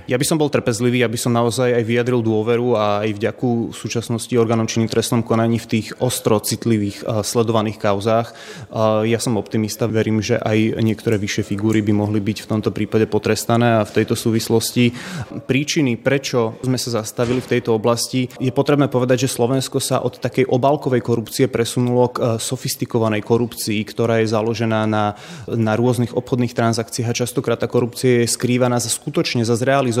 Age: 20-39